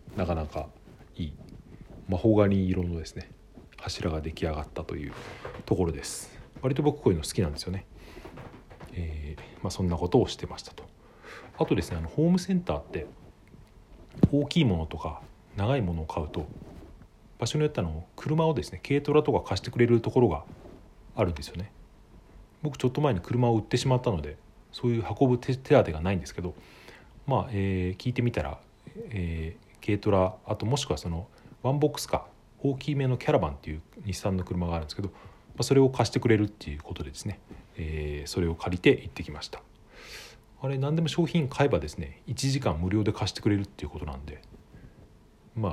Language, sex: Japanese, male